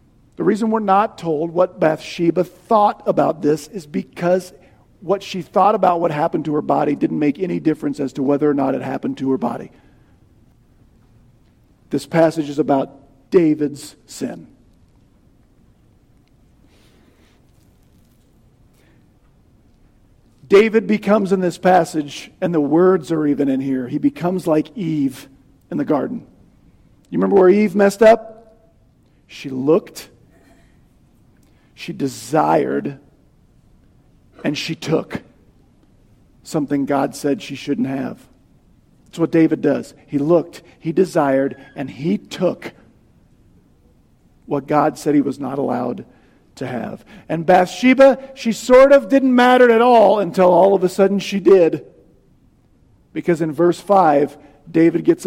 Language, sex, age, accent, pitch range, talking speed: English, male, 50-69, American, 140-190 Hz, 130 wpm